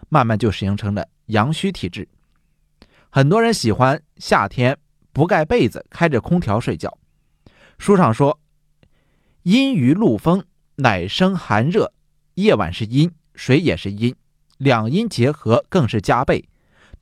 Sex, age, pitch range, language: male, 30-49, 110-170 Hz, Chinese